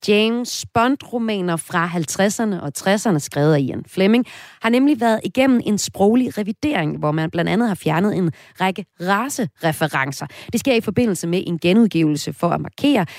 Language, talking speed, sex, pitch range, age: Danish, 165 wpm, female, 165-230 Hz, 30-49